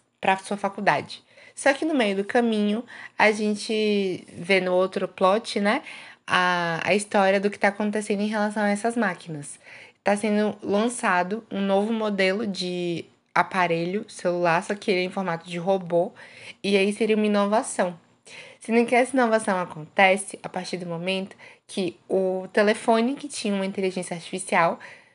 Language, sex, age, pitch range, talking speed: Portuguese, female, 20-39, 185-220 Hz, 160 wpm